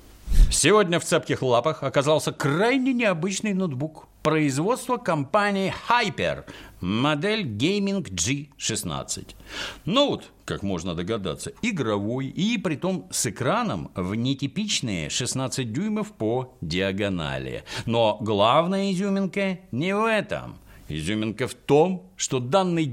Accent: native